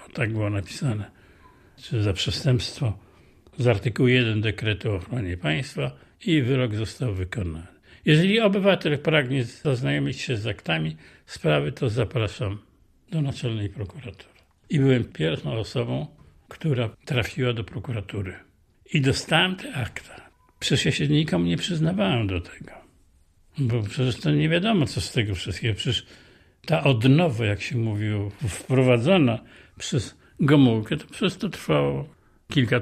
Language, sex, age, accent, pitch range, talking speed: Polish, male, 60-79, native, 95-130 Hz, 130 wpm